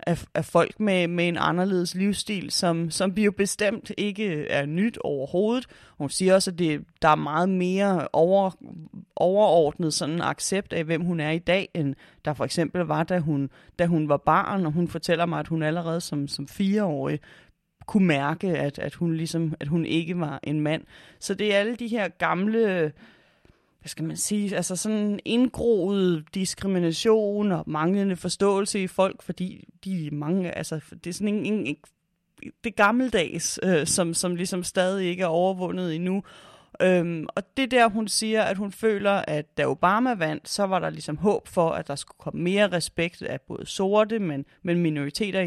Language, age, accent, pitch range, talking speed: Danish, 30-49, native, 165-205 Hz, 185 wpm